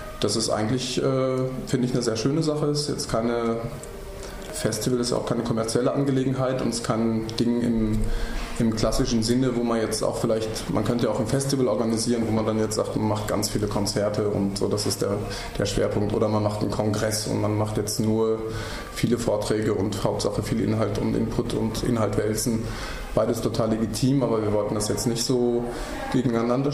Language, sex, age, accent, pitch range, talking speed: German, male, 20-39, German, 110-130 Hz, 200 wpm